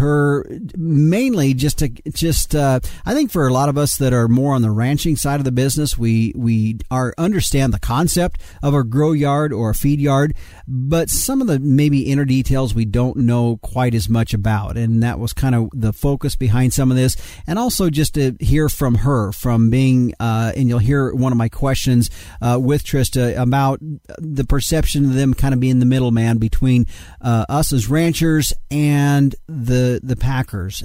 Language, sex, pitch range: English, male, 115-140 Hz